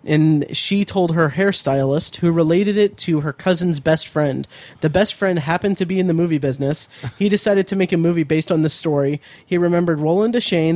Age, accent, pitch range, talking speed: 20-39, American, 145-180 Hz, 205 wpm